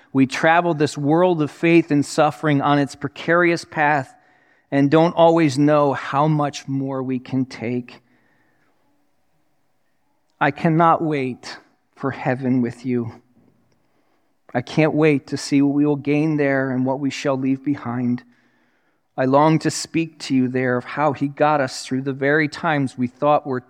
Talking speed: 160 wpm